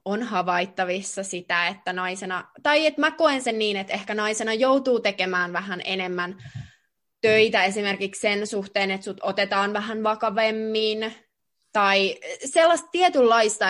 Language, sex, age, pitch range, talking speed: Finnish, female, 20-39, 185-225 Hz, 130 wpm